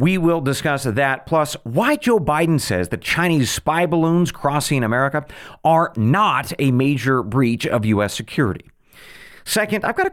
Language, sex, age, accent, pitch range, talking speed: English, male, 40-59, American, 110-165 Hz, 160 wpm